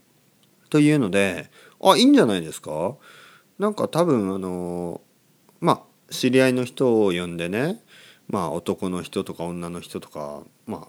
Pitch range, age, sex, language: 90-145 Hz, 40-59, male, Japanese